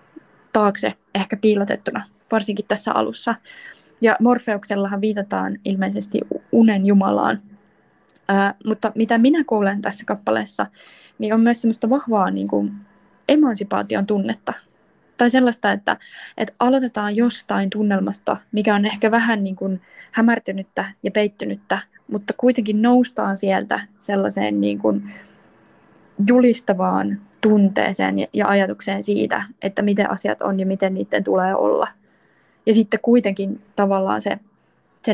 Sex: female